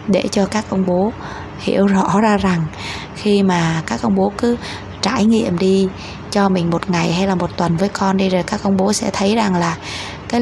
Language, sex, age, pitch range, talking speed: Vietnamese, female, 20-39, 175-205 Hz, 220 wpm